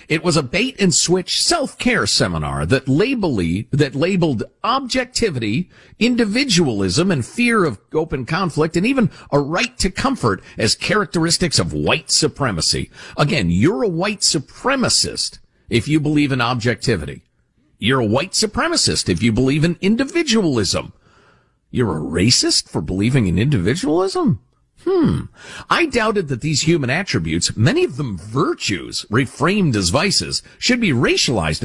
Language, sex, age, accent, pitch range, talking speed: English, male, 50-69, American, 125-205 Hz, 135 wpm